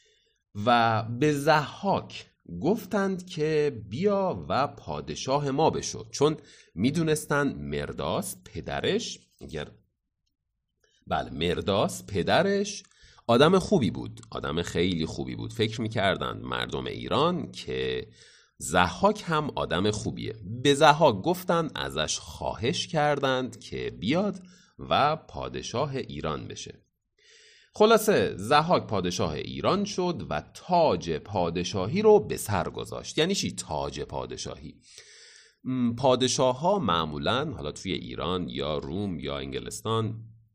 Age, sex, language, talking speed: 40-59, male, Persian, 105 wpm